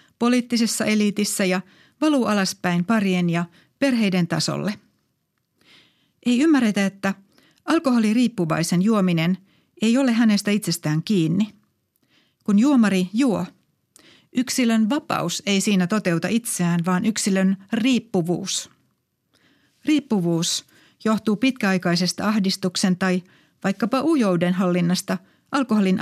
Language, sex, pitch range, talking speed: Finnish, female, 185-235 Hz, 90 wpm